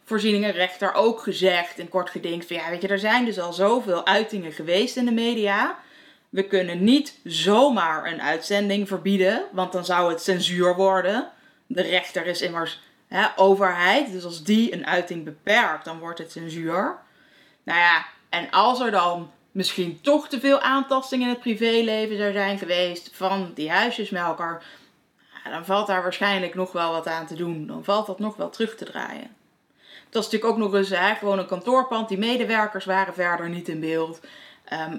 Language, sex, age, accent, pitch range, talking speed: Dutch, female, 20-39, Dutch, 175-210 Hz, 180 wpm